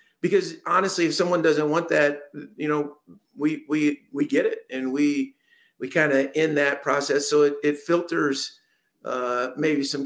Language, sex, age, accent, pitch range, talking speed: English, male, 50-69, American, 135-155 Hz, 175 wpm